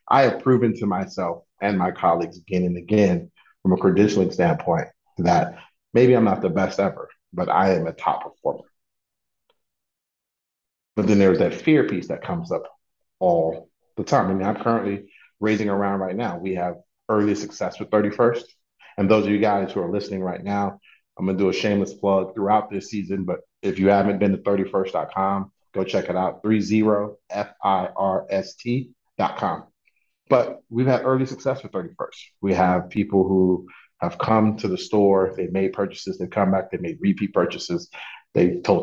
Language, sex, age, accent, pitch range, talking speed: English, male, 30-49, American, 95-110 Hz, 185 wpm